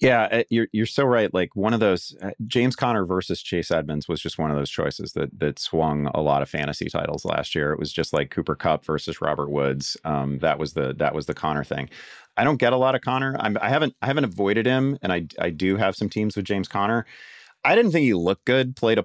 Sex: male